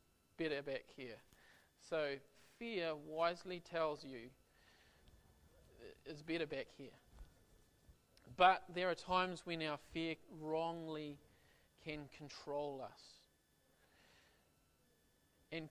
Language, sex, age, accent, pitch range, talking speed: English, male, 40-59, Australian, 130-165 Hz, 90 wpm